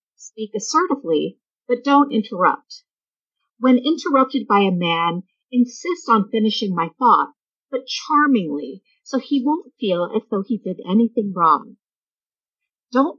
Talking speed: 125 wpm